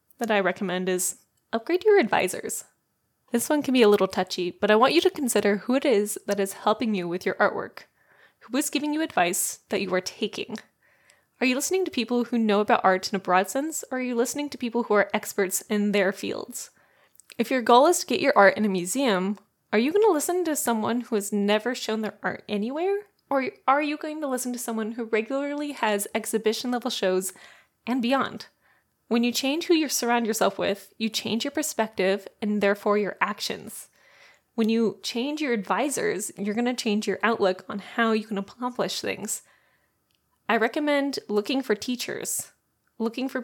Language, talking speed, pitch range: English, 200 wpm, 200-255 Hz